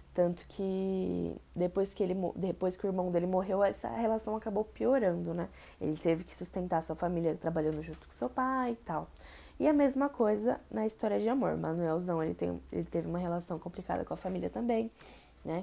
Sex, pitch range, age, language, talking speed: female, 175-225 Hz, 10-29, Portuguese, 180 wpm